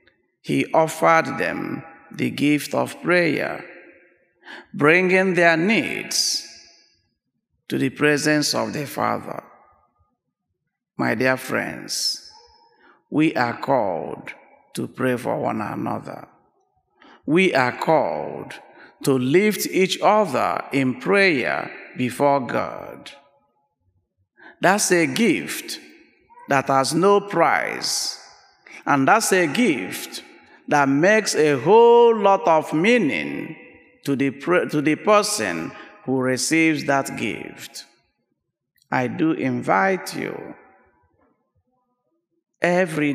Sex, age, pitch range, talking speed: male, 50-69, 135-185 Hz, 95 wpm